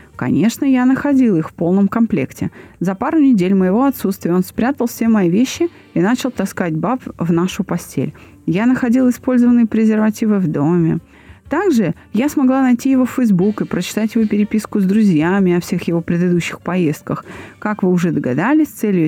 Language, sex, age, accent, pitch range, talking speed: Russian, female, 30-49, native, 180-255 Hz, 170 wpm